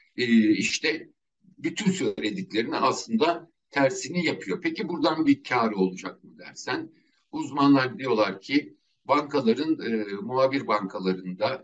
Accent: native